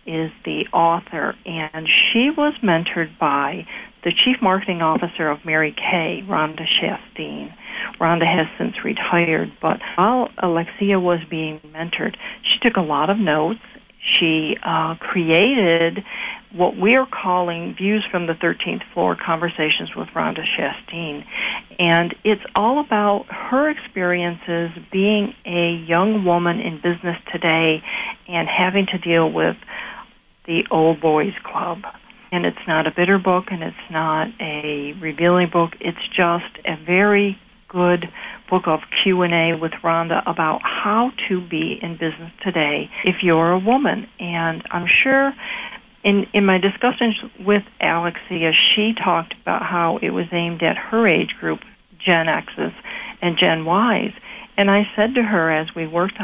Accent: American